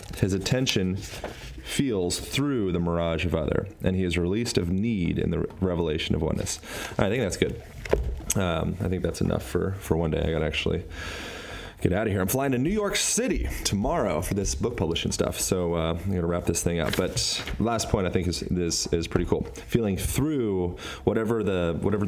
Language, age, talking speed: English, 30-49, 205 wpm